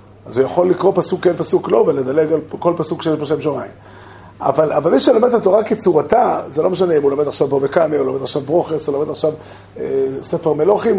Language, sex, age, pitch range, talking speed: Hebrew, male, 30-49, 135-210 Hz, 220 wpm